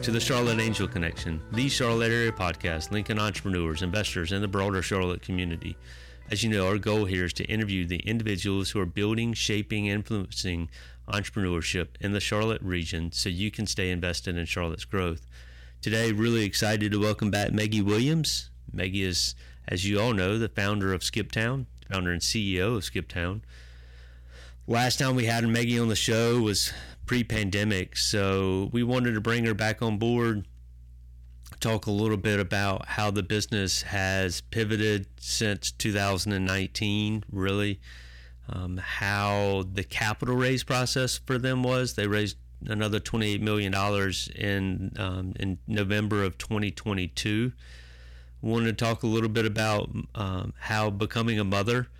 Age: 30-49